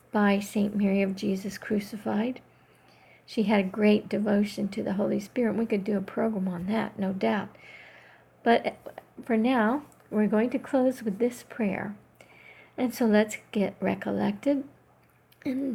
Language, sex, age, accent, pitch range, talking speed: English, female, 50-69, American, 190-235 Hz, 150 wpm